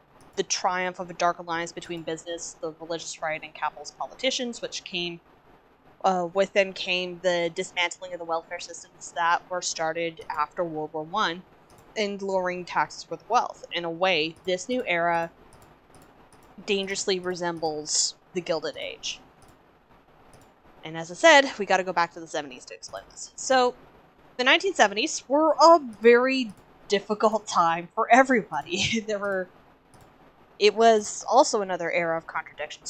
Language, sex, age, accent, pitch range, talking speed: English, female, 20-39, American, 165-200 Hz, 150 wpm